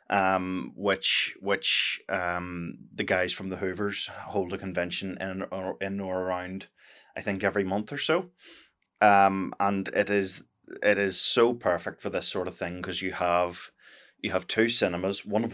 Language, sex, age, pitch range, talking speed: English, male, 20-39, 90-95 Hz, 175 wpm